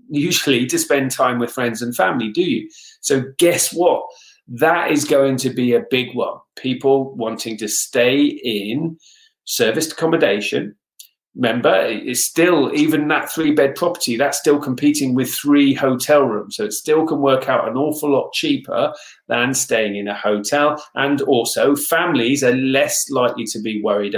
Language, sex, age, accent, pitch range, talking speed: English, male, 40-59, British, 120-170 Hz, 165 wpm